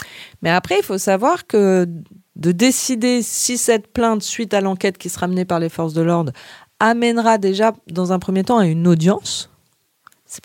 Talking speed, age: 185 wpm, 40-59